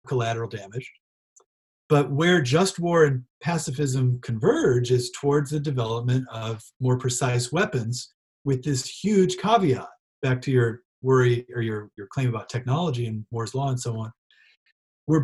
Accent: American